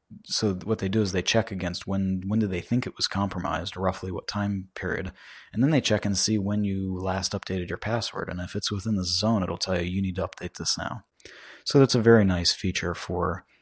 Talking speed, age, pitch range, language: 240 wpm, 30-49, 90-100 Hz, English